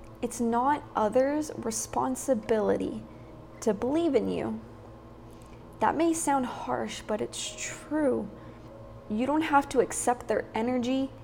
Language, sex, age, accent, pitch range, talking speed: English, female, 20-39, American, 215-270 Hz, 115 wpm